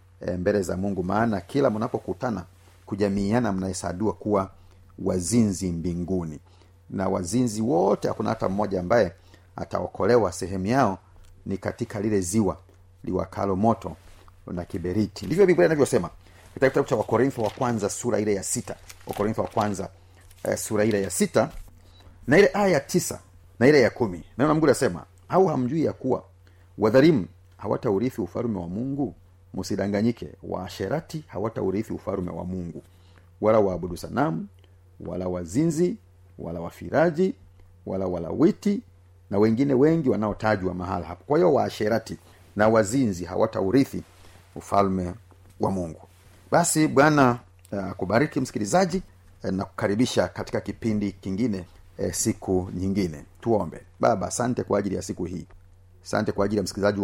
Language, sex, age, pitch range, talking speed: Swahili, male, 40-59, 90-110 Hz, 130 wpm